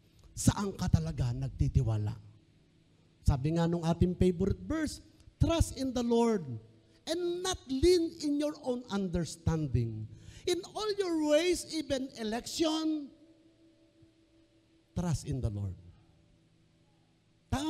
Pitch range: 145-235 Hz